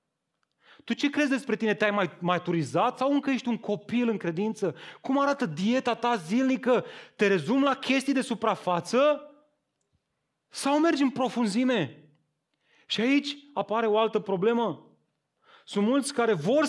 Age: 30-49